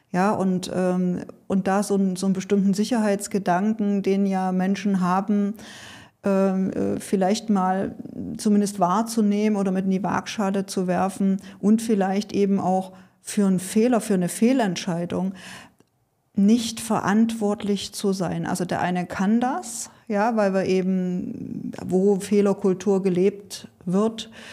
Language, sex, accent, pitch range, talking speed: German, female, German, 180-205 Hz, 120 wpm